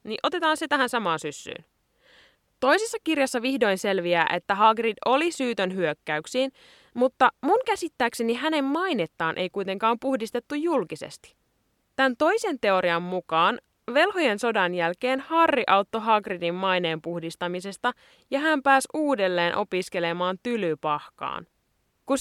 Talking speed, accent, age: 115 wpm, native, 20-39